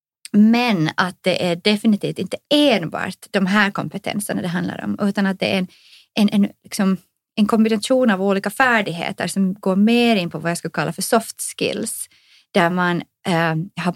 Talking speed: 180 wpm